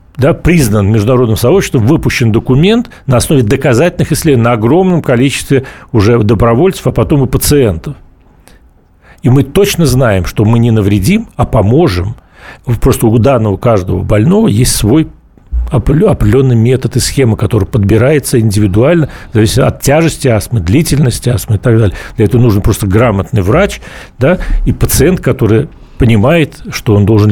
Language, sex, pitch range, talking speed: Russian, male, 110-145 Hz, 140 wpm